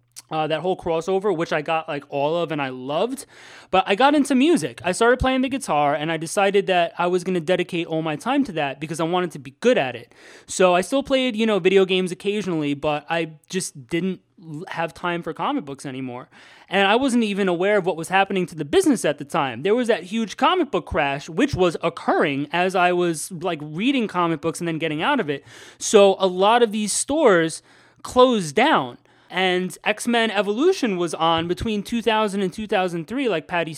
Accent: American